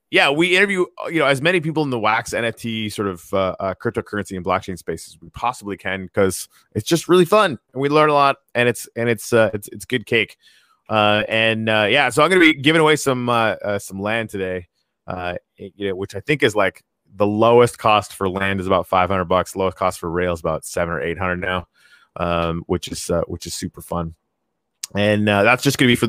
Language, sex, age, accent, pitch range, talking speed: English, male, 30-49, American, 95-125 Hz, 235 wpm